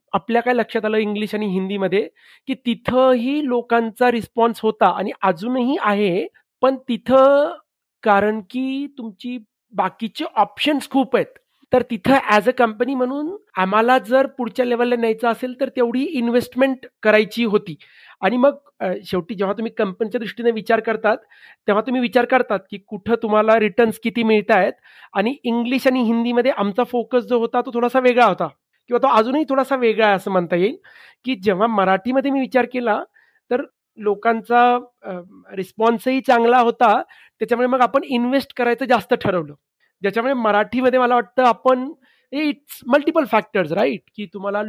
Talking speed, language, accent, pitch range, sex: 135 wpm, Marathi, native, 210-260 Hz, male